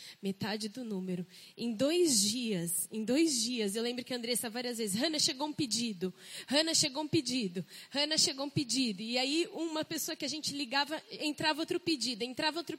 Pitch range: 220-305 Hz